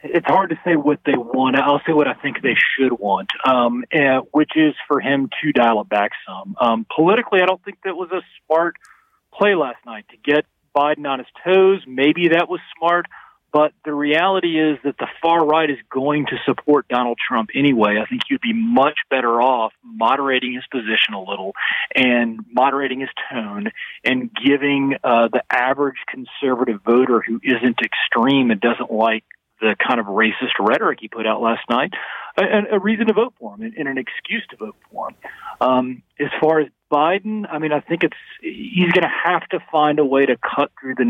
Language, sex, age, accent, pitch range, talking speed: English, male, 40-59, American, 125-165 Hz, 200 wpm